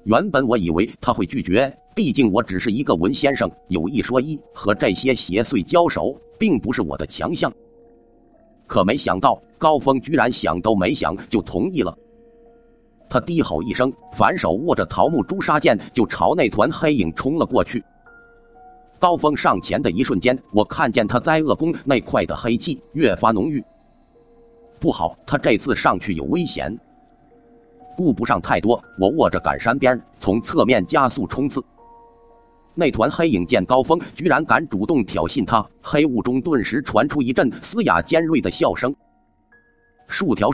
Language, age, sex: Chinese, 50-69, male